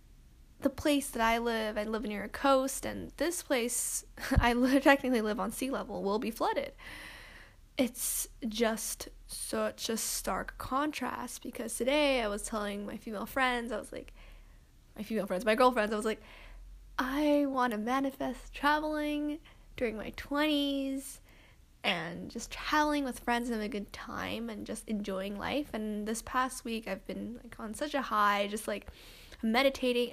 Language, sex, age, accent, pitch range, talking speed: English, female, 10-29, American, 215-270 Hz, 165 wpm